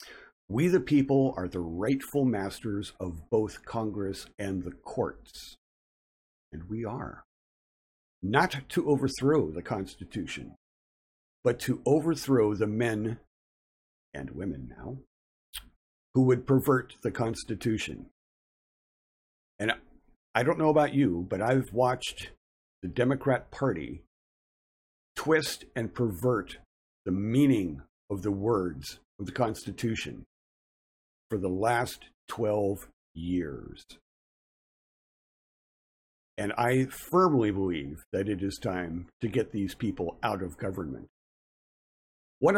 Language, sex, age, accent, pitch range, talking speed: English, male, 50-69, American, 90-130 Hz, 110 wpm